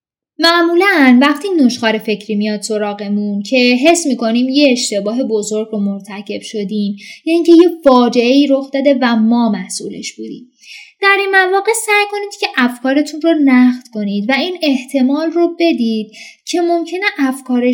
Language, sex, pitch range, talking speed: Persian, female, 220-300 Hz, 150 wpm